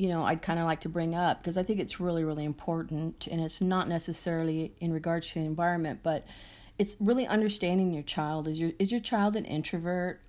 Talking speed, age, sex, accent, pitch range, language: 215 wpm, 40-59, female, American, 160-195 Hz, English